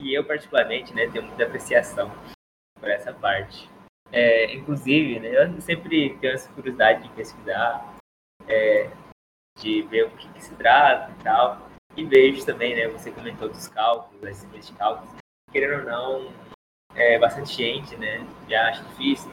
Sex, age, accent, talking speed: male, 20-39, Brazilian, 160 wpm